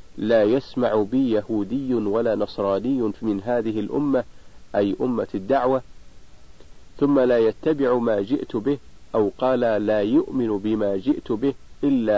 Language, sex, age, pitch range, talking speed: Arabic, male, 50-69, 100-130 Hz, 130 wpm